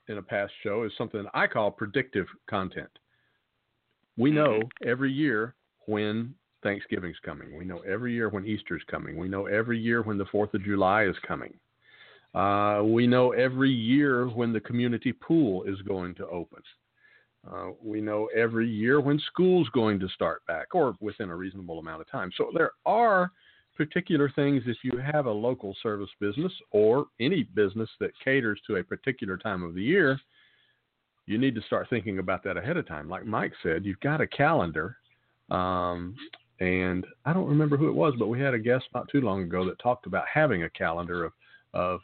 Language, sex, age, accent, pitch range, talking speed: English, male, 50-69, American, 100-135 Hz, 190 wpm